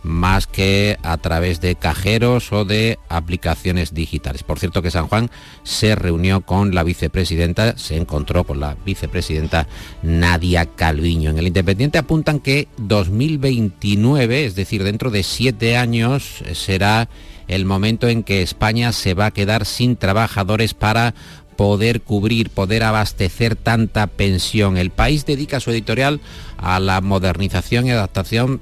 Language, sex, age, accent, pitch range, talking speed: Spanish, male, 50-69, Spanish, 85-110 Hz, 145 wpm